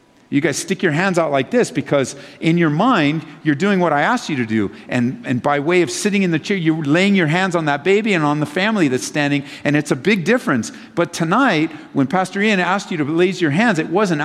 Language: English